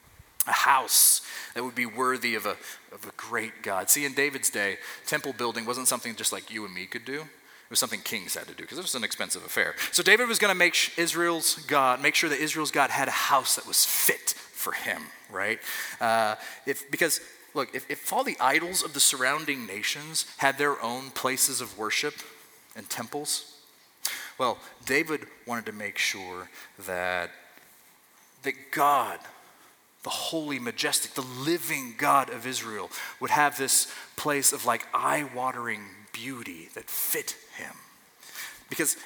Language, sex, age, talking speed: English, male, 30-49, 170 wpm